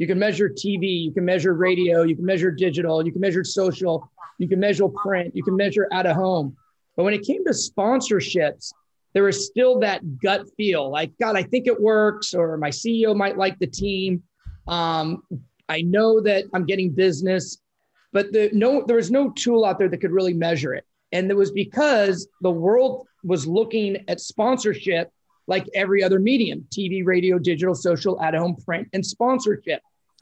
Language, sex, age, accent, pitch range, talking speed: English, male, 30-49, American, 170-210 Hz, 190 wpm